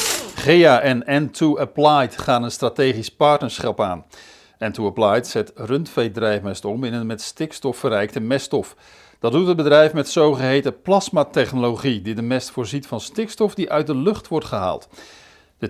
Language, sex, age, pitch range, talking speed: Dutch, male, 50-69, 115-165 Hz, 155 wpm